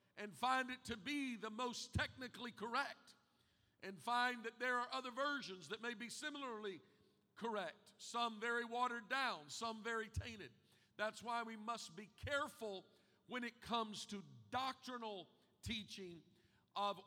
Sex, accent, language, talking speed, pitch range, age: male, American, English, 145 wpm, 195-240 Hz, 50-69